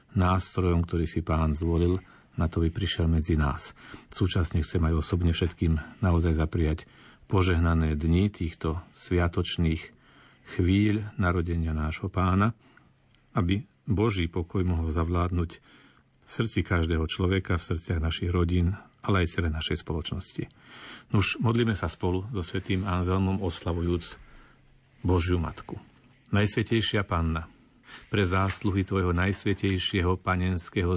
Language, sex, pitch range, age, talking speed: Slovak, male, 85-100 Hz, 40-59, 120 wpm